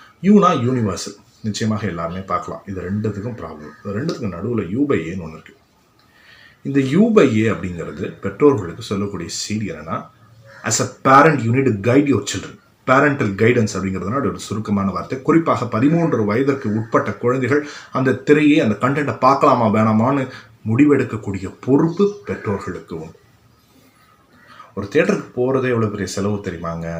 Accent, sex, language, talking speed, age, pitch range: native, male, Tamil, 125 wpm, 30-49, 100-135 Hz